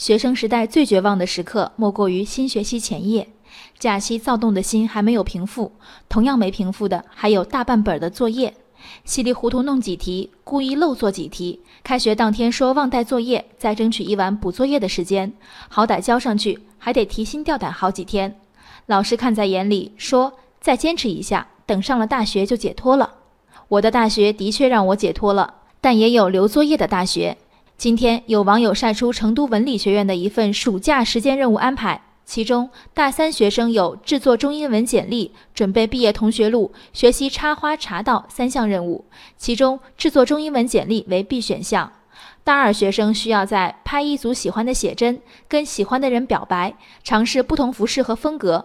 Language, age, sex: Chinese, 20-39, female